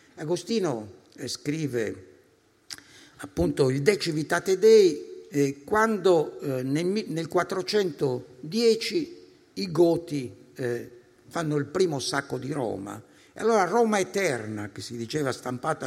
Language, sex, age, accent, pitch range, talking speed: Italian, male, 60-79, native, 125-200 Hz, 100 wpm